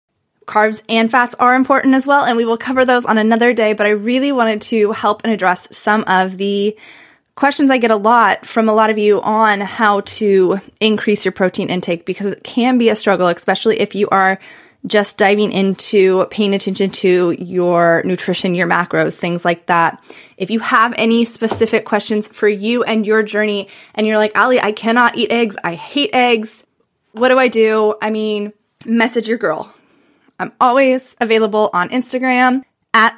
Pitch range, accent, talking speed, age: 205-250 Hz, American, 185 wpm, 20-39